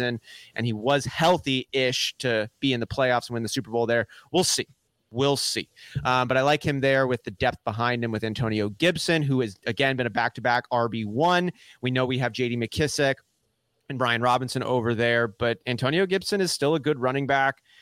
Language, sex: English, male